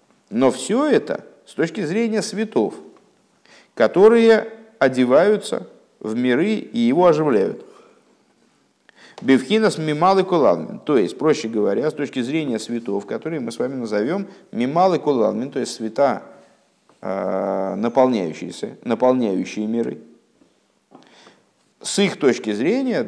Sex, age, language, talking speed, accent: male, 50-69, Russian, 105 wpm, native